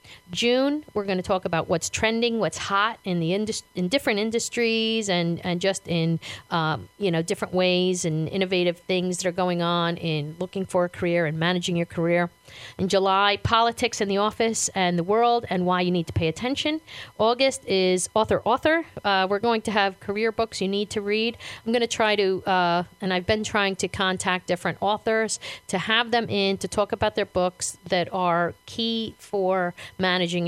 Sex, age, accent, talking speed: female, 40-59, American, 195 wpm